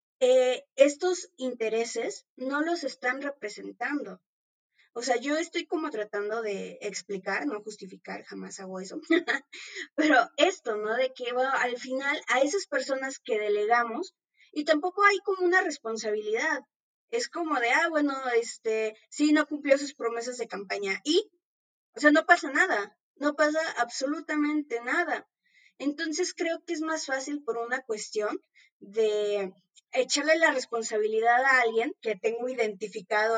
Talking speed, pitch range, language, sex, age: 140 wpm, 225-305 Hz, Spanish, female, 20-39